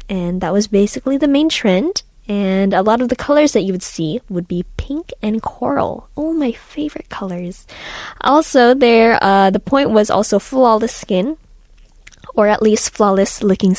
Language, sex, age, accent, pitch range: Korean, female, 10-29, American, 195-260 Hz